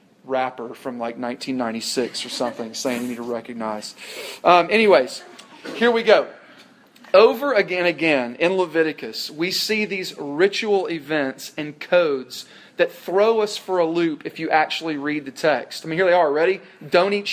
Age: 40-59